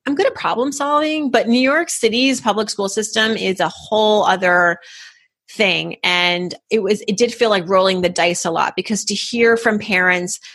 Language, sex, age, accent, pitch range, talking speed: English, female, 30-49, American, 180-220 Hz, 195 wpm